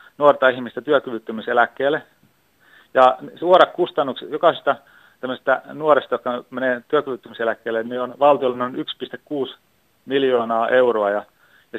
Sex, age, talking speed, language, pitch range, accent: male, 30-49, 105 wpm, Finnish, 120-140 Hz, native